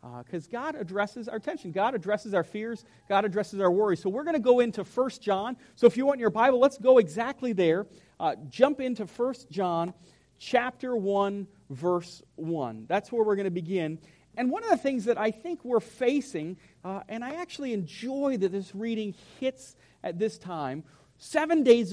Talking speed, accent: 195 wpm, American